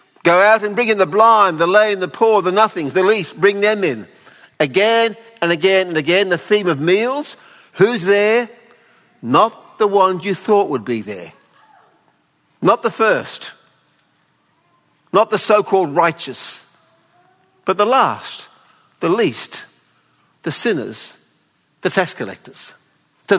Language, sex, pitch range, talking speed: English, male, 170-220 Hz, 140 wpm